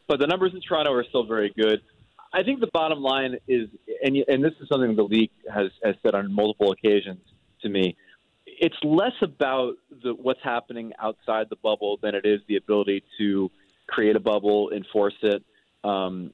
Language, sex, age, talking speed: English, male, 30-49, 185 wpm